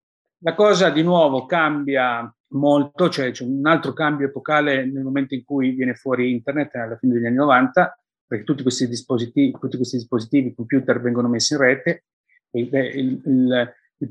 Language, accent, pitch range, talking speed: Italian, native, 125-140 Hz, 170 wpm